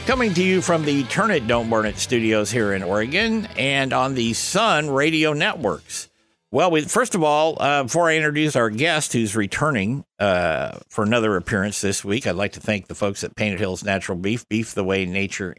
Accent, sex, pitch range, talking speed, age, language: American, male, 105-150 Hz, 210 wpm, 60-79, English